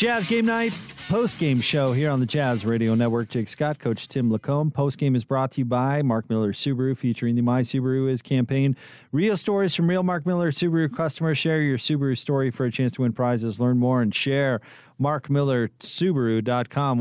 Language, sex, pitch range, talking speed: English, male, 120-145 Hz, 205 wpm